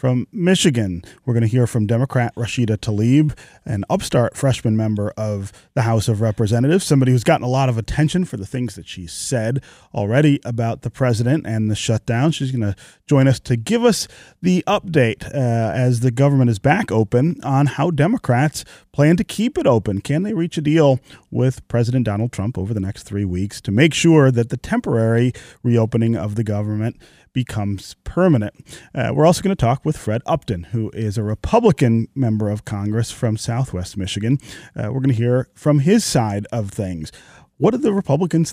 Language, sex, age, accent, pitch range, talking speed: English, male, 30-49, American, 110-140 Hz, 190 wpm